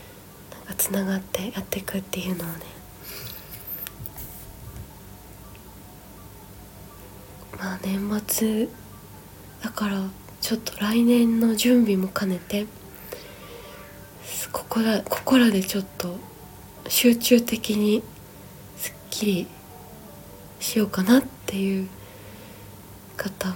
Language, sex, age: Japanese, female, 20-39